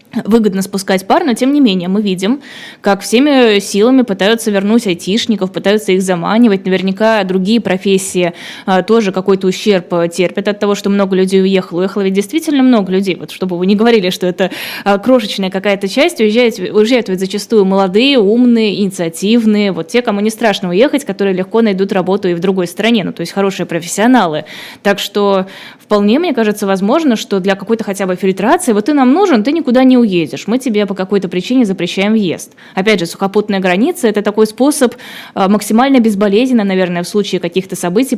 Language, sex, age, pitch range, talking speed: Russian, female, 20-39, 185-230 Hz, 180 wpm